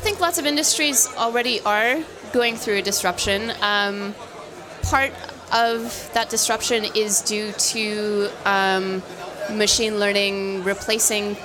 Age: 30-49